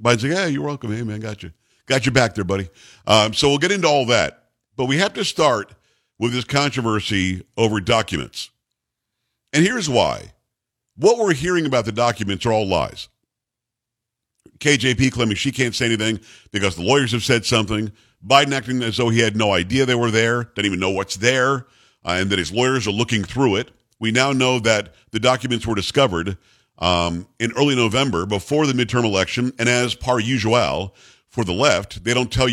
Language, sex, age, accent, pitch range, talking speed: English, male, 50-69, American, 105-130 Hz, 195 wpm